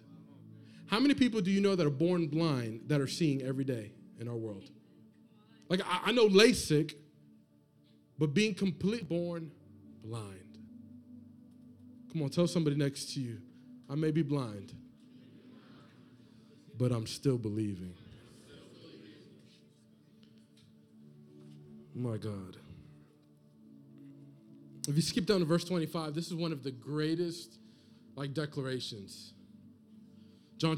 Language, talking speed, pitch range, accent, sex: English, 120 wpm, 125-180 Hz, American, male